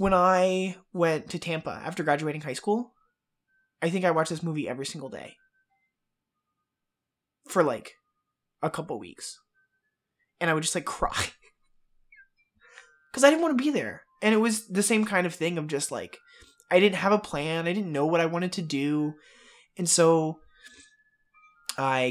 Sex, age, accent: male, 20-39, American